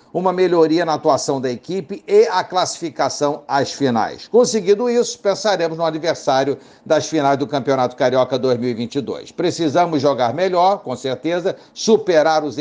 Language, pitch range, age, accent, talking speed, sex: Portuguese, 140-185 Hz, 60-79, Brazilian, 140 wpm, male